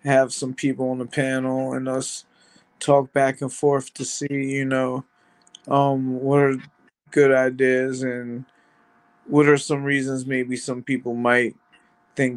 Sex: male